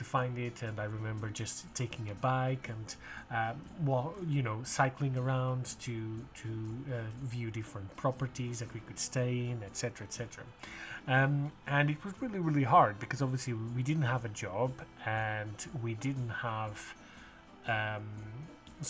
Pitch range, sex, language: 115-140 Hz, male, English